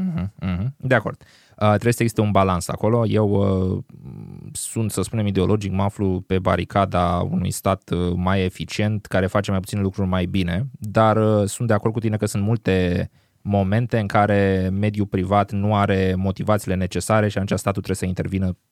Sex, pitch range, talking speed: male, 95-110 Hz, 165 wpm